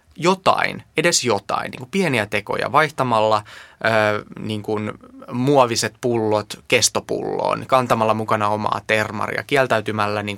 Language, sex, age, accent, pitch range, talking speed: Finnish, male, 20-39, native, 105-130 Hz, 115 wpm